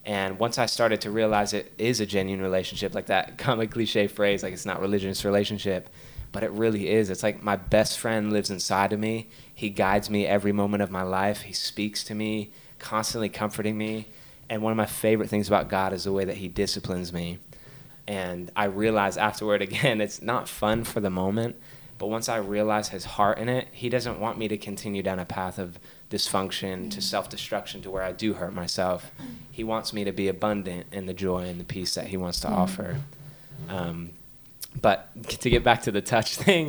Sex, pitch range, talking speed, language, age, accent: male, 100-115 Hz, 210 wpm, English, 20-39, American